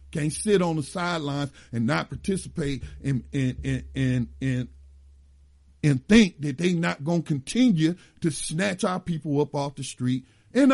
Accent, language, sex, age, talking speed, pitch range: American, English, male, 50-69, 180 wpm, 130-185 Hz